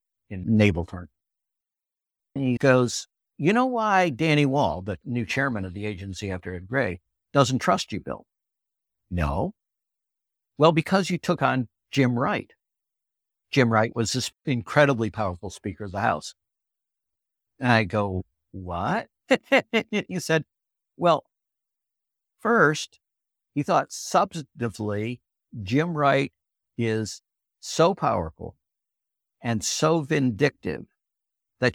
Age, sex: 60-79, male